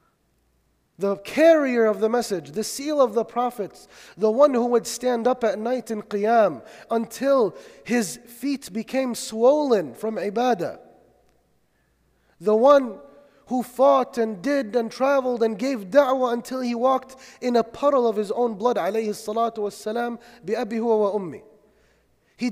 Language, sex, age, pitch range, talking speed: English, male, 30-49, 200-245 Hz, 145 wpm